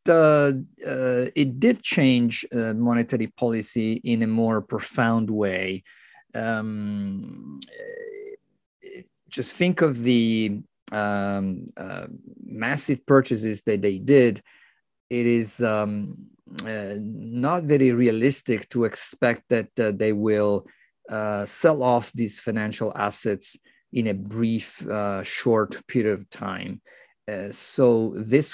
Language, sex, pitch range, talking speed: English, male, 105-125 Hz, 115 wpm